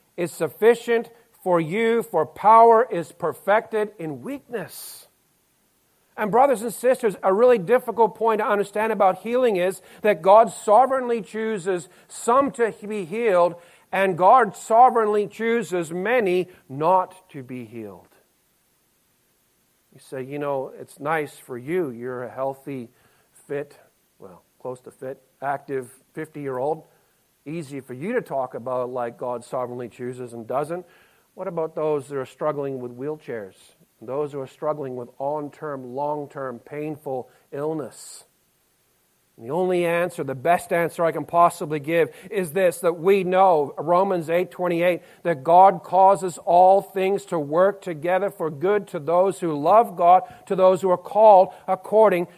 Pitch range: 145-205 Hz